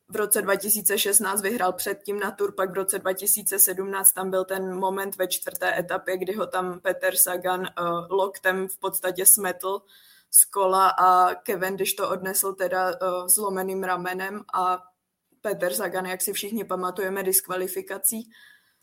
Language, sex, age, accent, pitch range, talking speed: Czech, female, 20-39, native, 190-215 Hz, 150 wpm